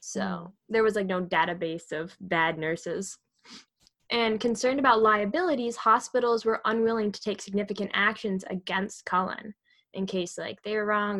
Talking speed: 150 wpm